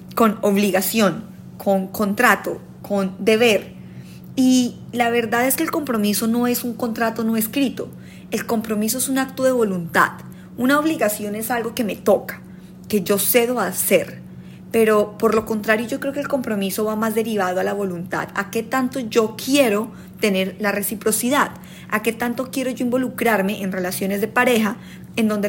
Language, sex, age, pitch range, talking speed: Spanish, female, 30-49, 195-240 Hz, 170 wpm